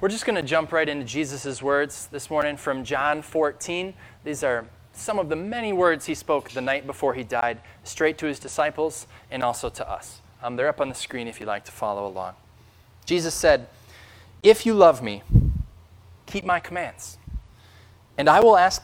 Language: English